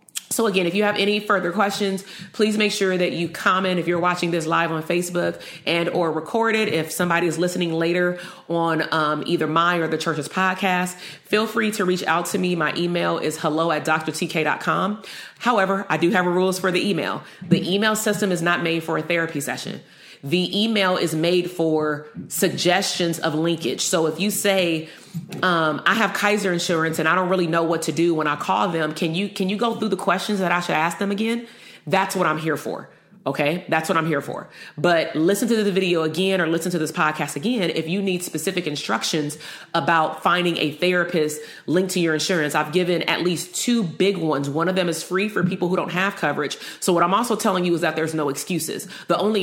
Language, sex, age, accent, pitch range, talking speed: English, female, 30-49, American, 160-190 Hz, 215 wpm